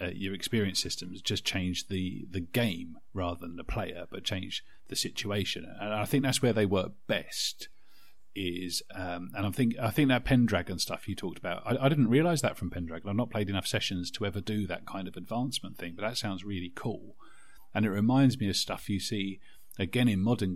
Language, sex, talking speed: English, male, 215 wpm